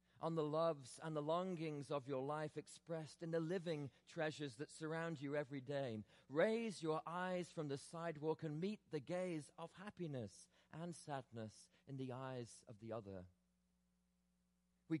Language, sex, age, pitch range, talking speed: English, male, 40-59, 110-165 Hz, 160 wpm